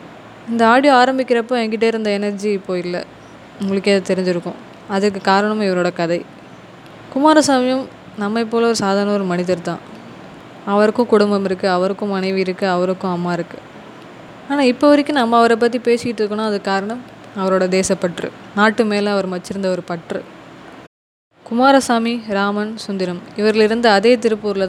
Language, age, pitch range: Tamil, 20-39, 185-225 Hz